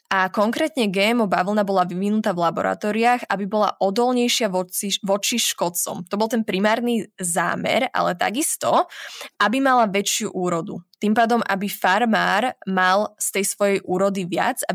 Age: 20-39